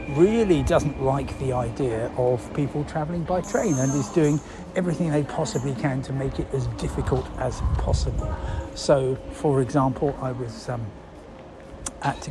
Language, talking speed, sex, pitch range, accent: English, 150 wpm, male, 125-155 Hz, British